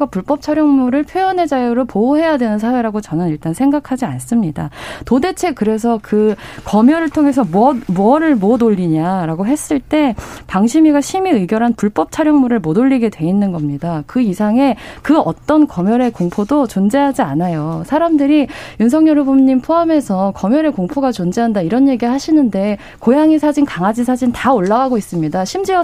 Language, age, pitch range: Korean, 20-39, 200-285 Hz